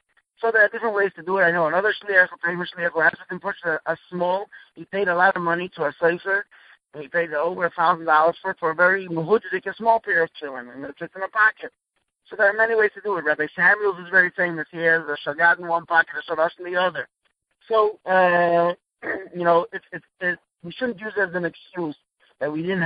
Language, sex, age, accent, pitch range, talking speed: English, male, 50-69, American, 155-195 Hz, 240 wpm